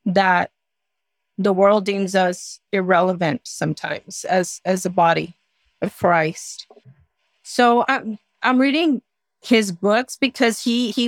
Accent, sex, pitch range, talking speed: American, female, 195-235 Hz, 120 wpm